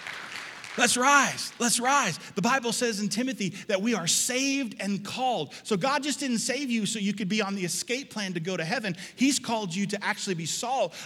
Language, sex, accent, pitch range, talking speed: English, male, American, 150-200 Hz, 215 wpm